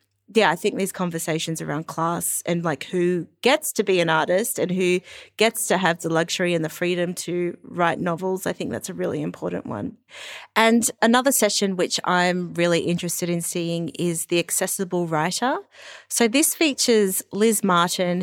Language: English